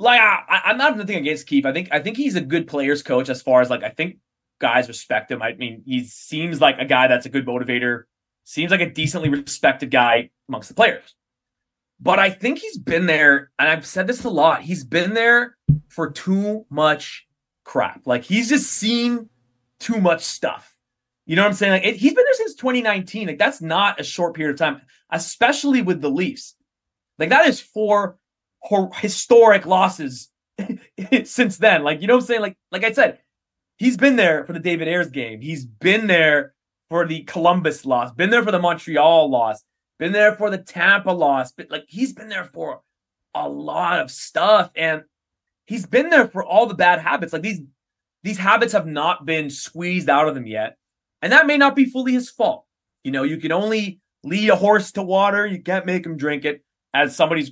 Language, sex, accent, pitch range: English, male, American, 150-215 Hz